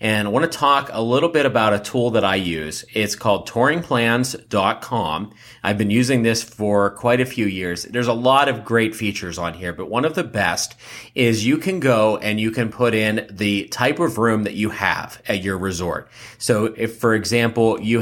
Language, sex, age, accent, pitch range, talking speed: English, male, 30-49, American, 105-130 Hz, 210 wpm